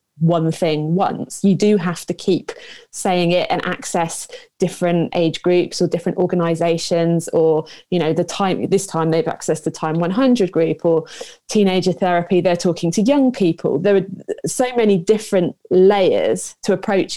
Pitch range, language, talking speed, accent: 165-200 Hz, English, 165 wpm, British